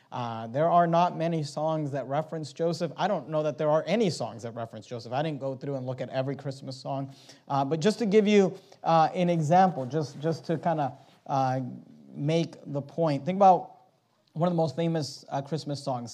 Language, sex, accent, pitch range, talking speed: English, male, American, 135-165 Hz, 210 wpm